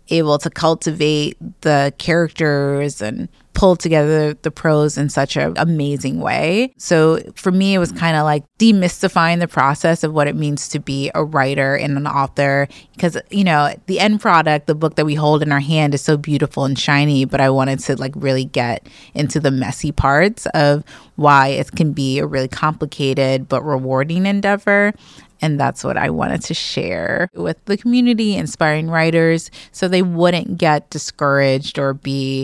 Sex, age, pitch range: female, 20-39, 145-175 Hz